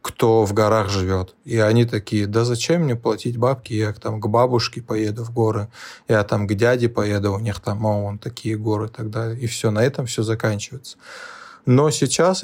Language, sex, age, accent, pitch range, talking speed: Russian, male, 20-39, native, 110-125 Hz, 190 wpm